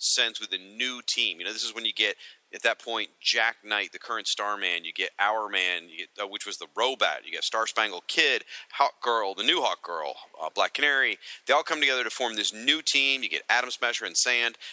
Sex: male